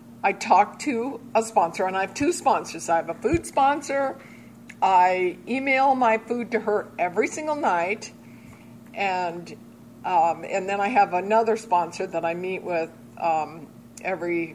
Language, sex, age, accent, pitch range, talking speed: English, female, 50-69, American, 175-230 Hz, 155 wpm